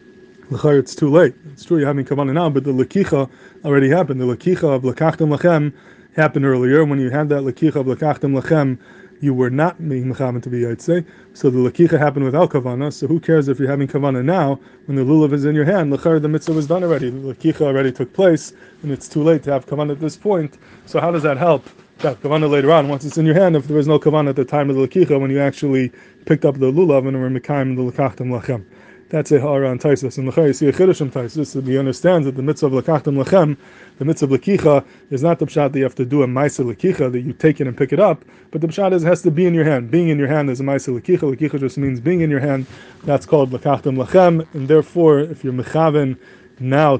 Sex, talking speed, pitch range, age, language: male, 250 wpm, 135-160 Hz, 20-39, English